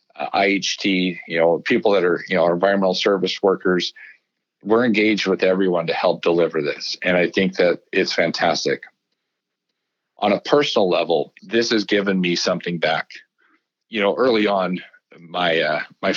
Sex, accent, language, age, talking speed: male, American, English, 40-59, 155 wpm